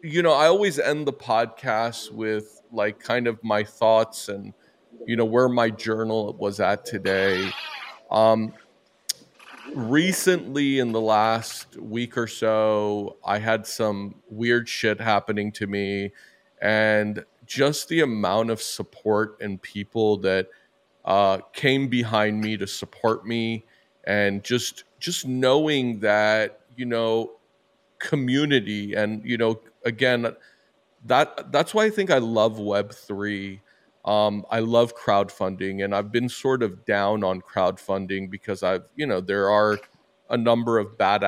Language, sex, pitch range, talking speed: English, male, 105-120 Hz, 140 wpm